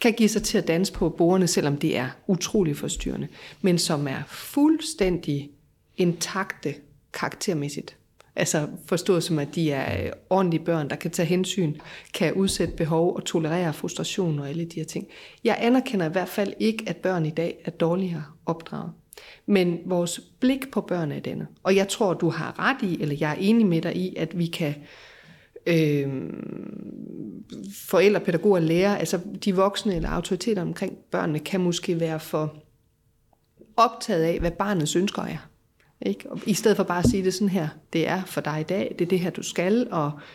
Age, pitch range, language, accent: 40-59, 160-195 Hz, Danish, native